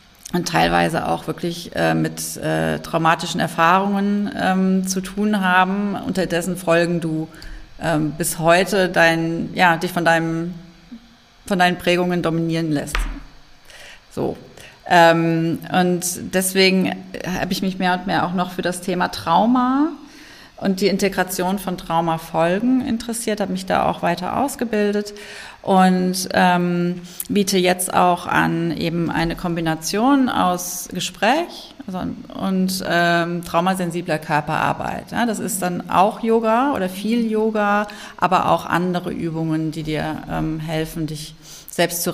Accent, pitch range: German, 165-195 Hz